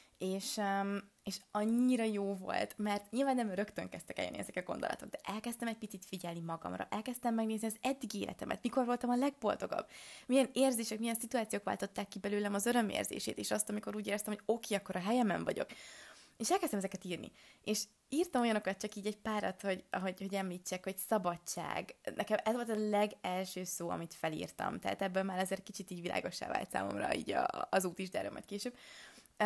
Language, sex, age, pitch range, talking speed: Hungarian, female, 20-39, 185-220 Hz, 185 wpm